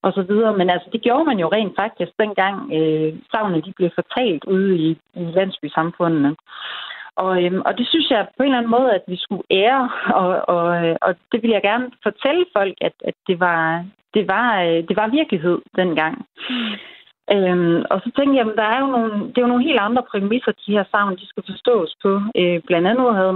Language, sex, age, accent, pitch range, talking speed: Danish, female, 30-49, native, 170-225 Hz, 210 wpm